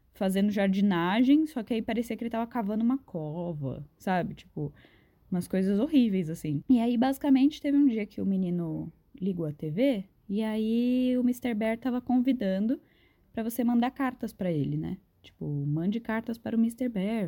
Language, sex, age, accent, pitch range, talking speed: Portuguese, female, 10-29, Brazilian, 190-255 Hz, 175 wpm